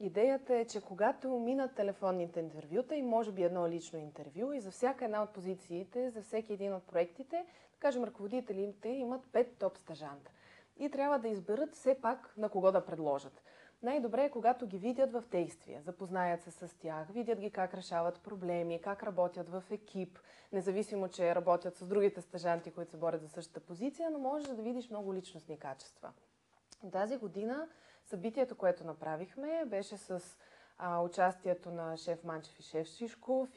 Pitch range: 170-225 Hz